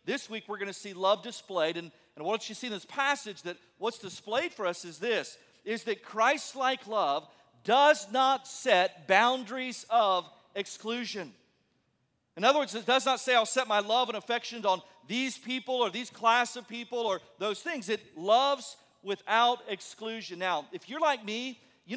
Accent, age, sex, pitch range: American, 40-59, male, 210-260 Hz